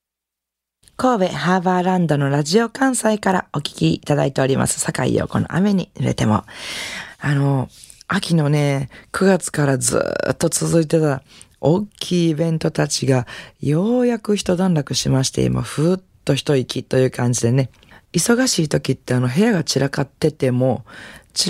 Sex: female